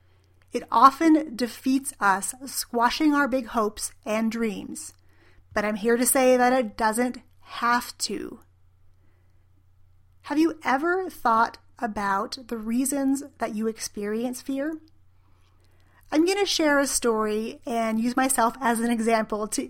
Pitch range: 210-260 Hz